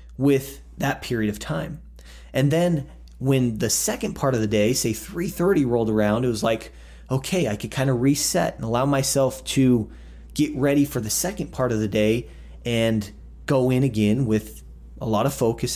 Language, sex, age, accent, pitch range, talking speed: English, male, 30-49, American, 105-140 Hz, 185 wpm